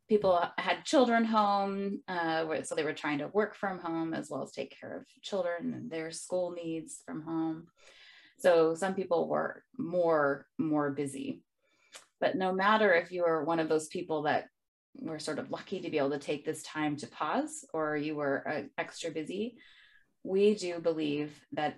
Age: 20-39